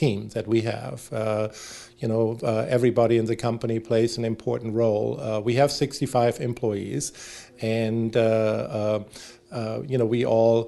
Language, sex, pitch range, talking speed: English, male, 110-125 Hz, 165 wpm